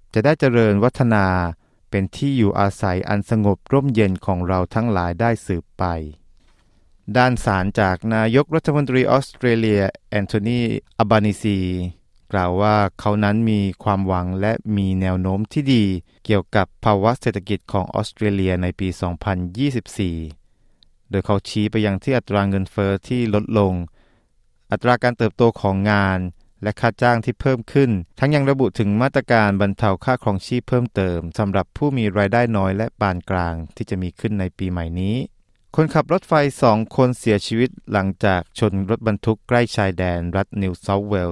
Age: 20-39